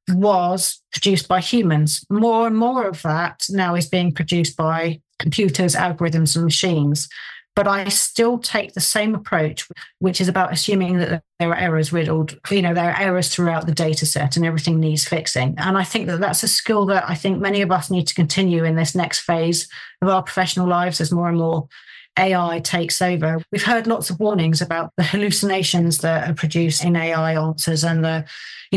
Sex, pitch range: female, 165-190 Hz